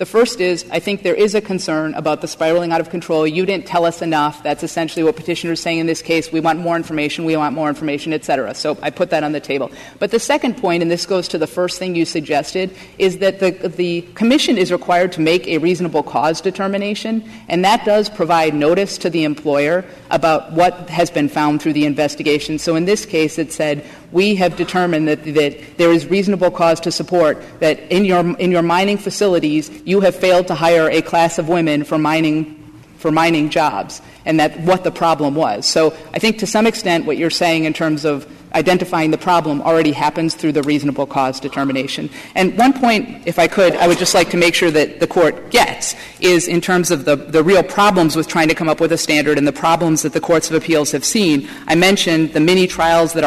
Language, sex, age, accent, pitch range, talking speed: English, female, 40-59, American, 155-180 Hz, 230 wpm